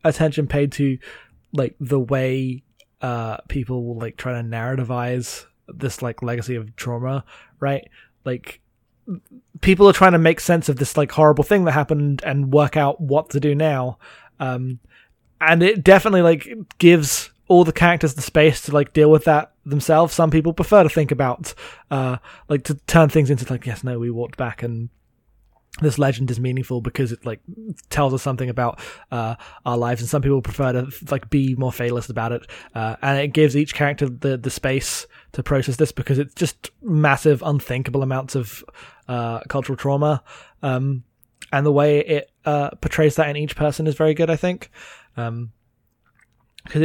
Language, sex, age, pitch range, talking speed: English, male, 20-39, 125-155 Hz, 180 wpm